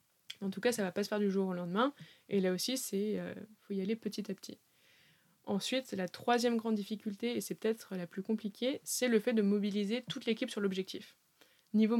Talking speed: 225 wpm